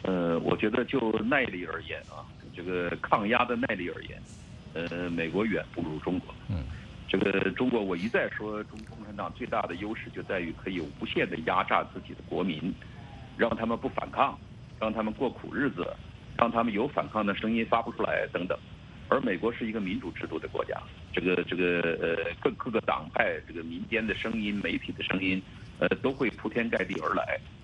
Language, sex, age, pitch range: English, male, 60-79, 95-125 Hz